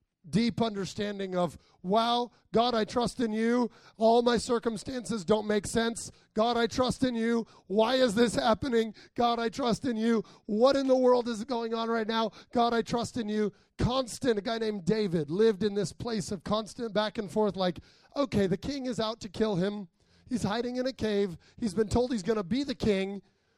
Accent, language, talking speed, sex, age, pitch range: American, English, 205 wpm, male, 30-49, 195-240 Hz